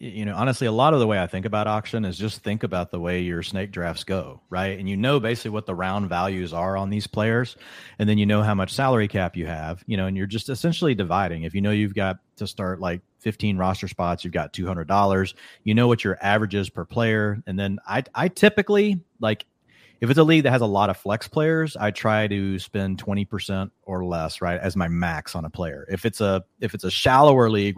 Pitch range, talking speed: 95-115 Hz, 245 wpm